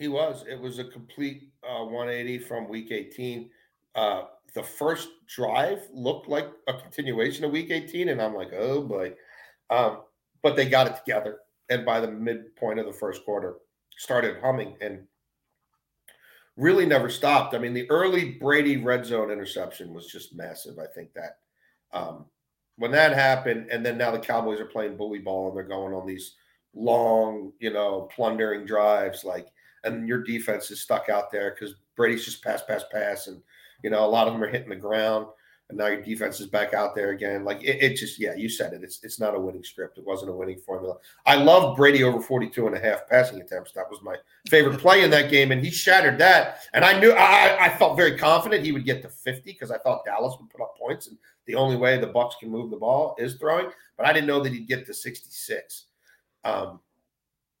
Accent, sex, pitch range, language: American, male, 105-140 Hz, English